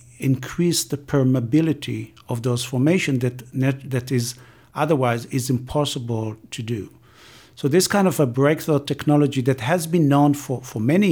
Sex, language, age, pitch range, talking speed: male, English, 50-69, 120-145 Hz, 150 wpm